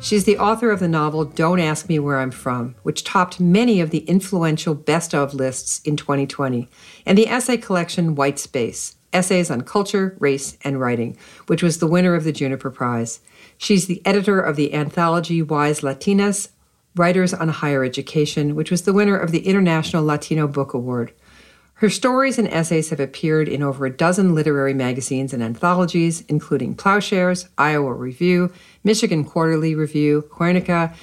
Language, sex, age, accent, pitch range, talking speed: English, female, 50-69, American, 140-180 Hz, 170 wpm